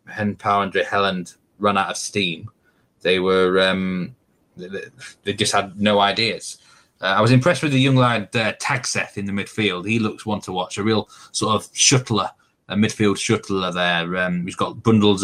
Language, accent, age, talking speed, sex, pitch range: English, British, 20-39, 195 wpm, male, 95-120 Hz